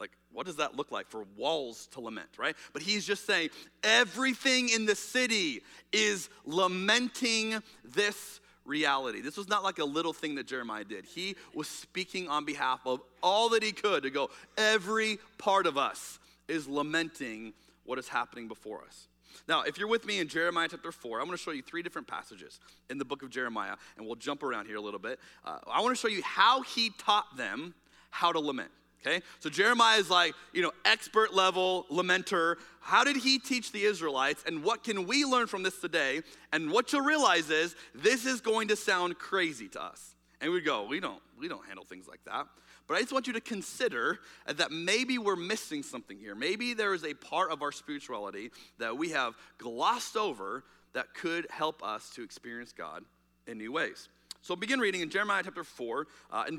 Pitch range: 160-230 Hz